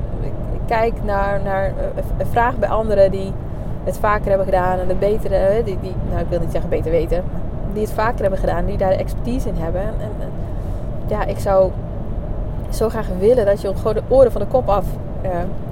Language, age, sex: Dutch, 20-39, female